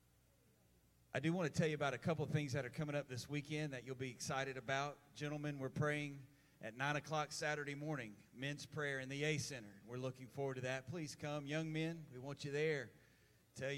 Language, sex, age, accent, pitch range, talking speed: English, male, 30-49, American, 125-145 Hz, 220 wpm